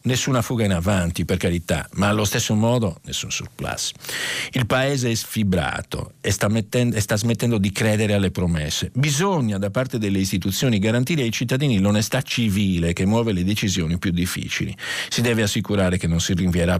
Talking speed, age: 170 wpm, 50-69